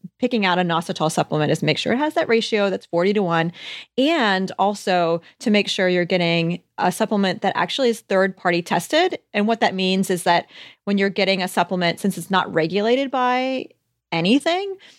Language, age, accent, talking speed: English, 30-49, American, 190 wpm